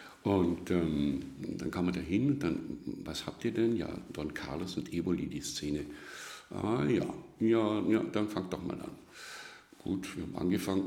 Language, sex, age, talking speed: German, male, 60-79, 175 wpm